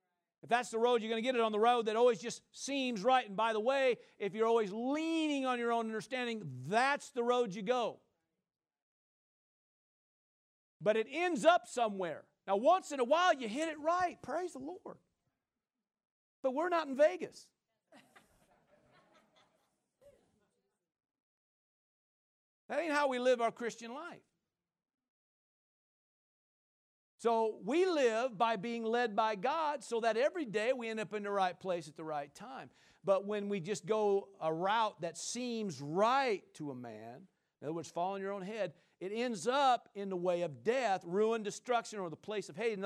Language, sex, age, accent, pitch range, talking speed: English, male, 50-69, American, 195-255 Hz, 175 wpm